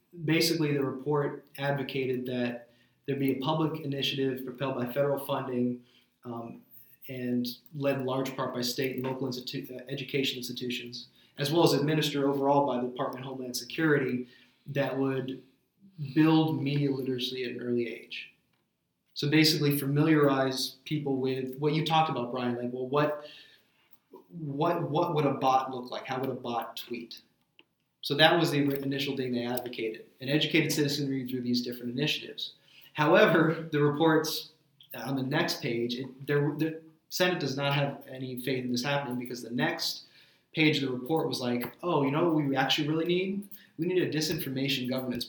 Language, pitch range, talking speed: English, 130-150 Hz, 165 wpm